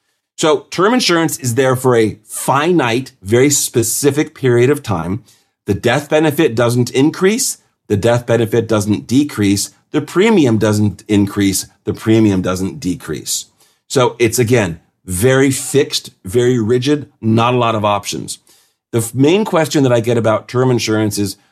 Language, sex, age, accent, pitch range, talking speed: English, male, 40-59, American, 105-130 Hz, 150 wpm